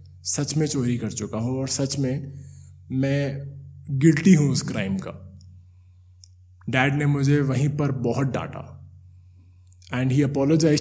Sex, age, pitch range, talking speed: male, 20-39, 100-150 Hz, 140 wpm